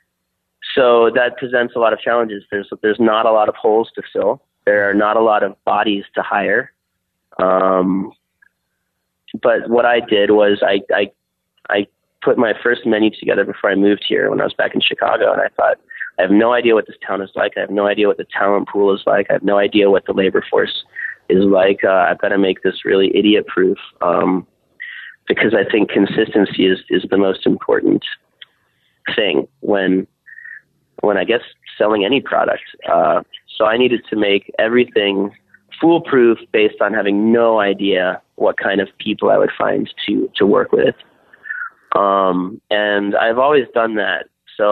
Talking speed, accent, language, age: 185 wpm, American, English, 30-49